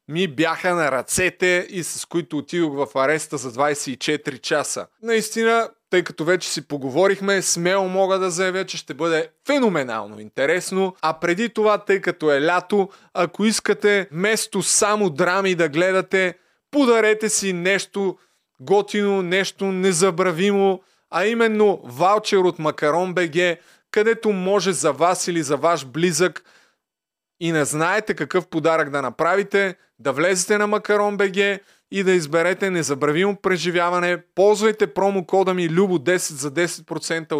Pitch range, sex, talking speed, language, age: 160-195 Hz, male, 140 wpm, Bulgarian, 20-39